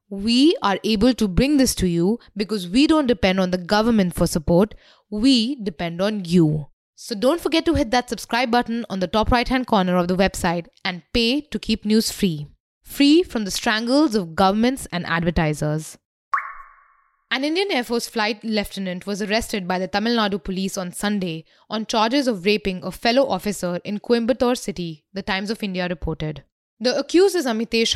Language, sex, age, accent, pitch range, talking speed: English, female, 20-39, Indian, 190-245 Hz, 180 wpm